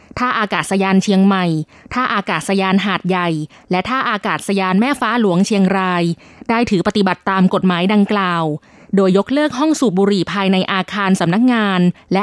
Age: 20-39